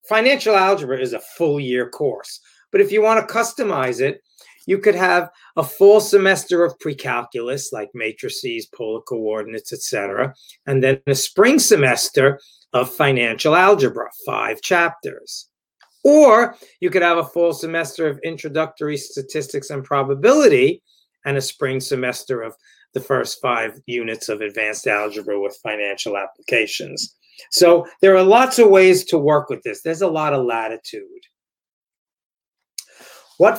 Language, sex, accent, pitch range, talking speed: English, male, American, 135-210 Hz, 140 wpm